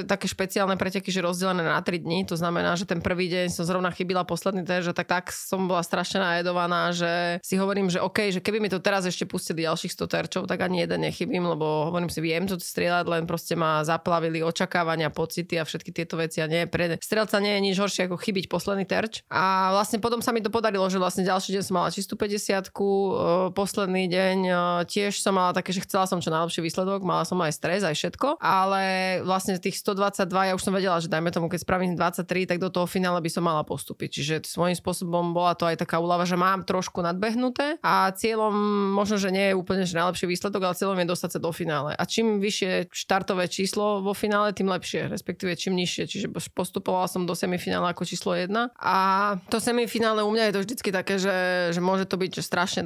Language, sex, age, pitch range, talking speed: Slovak, female, 20-39, 175-200 Hz, 220 wpm